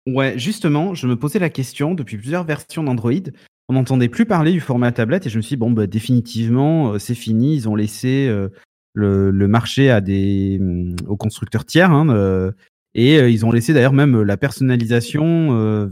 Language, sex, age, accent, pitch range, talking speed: French, male, 30-49, French, 115-155 Hz, 205 wpm